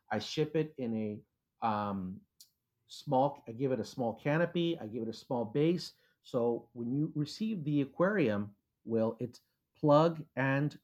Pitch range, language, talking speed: 110-160 Hz, English, 160 wpm